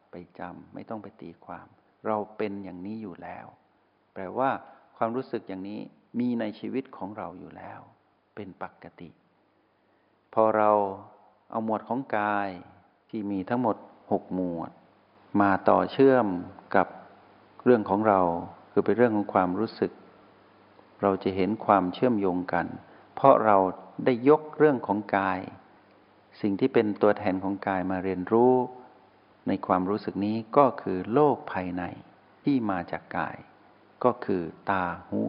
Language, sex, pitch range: Thai, male, 95-120 Hz